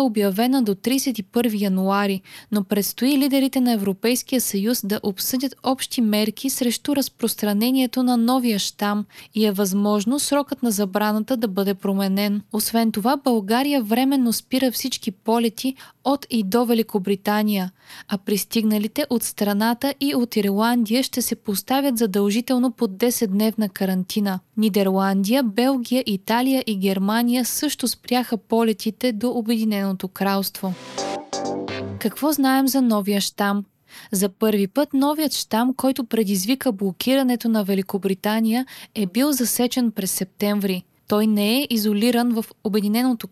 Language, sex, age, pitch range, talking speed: Bulgarian, female, 20-39, 205-250 Hz, 125 wpm